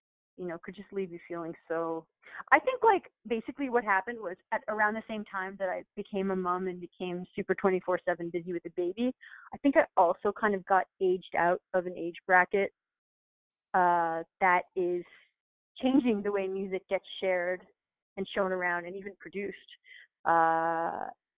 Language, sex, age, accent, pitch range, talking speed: English, female, 30-49, American, 185-240 Hz, 175 wpm